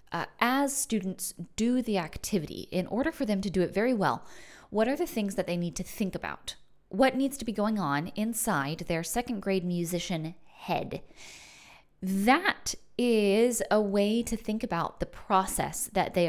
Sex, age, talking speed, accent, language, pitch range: female, 20-39, 175 wpm, American, English, 170-225 Hz